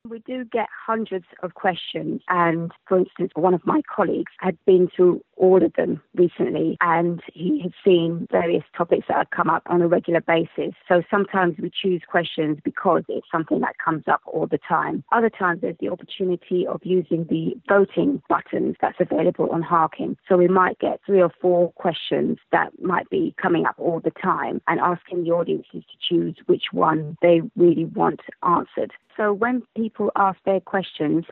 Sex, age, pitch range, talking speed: female, 30-49, 170-190 Hz, 185 wpm